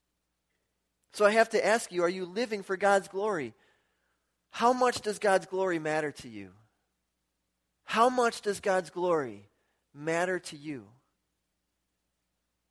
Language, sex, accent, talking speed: English, male, American, 130 wpm